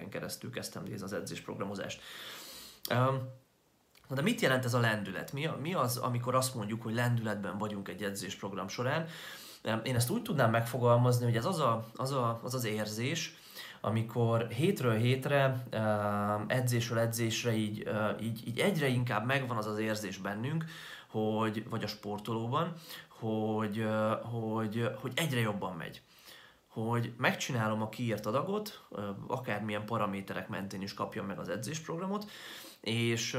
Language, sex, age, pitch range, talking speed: Hungarian, male, 30-49, 110-130 Hz, 135 wpm